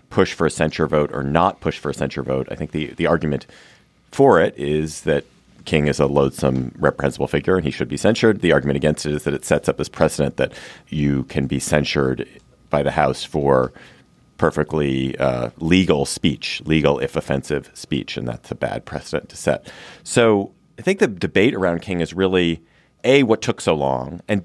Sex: male